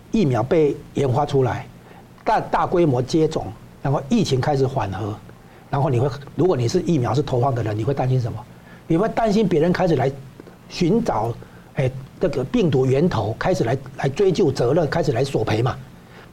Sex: male